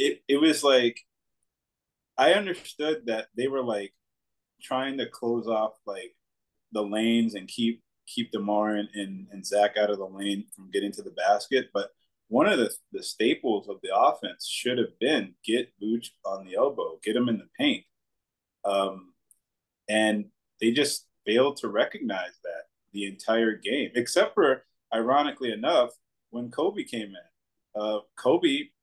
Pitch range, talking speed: 105-130 Hz, 160 wpm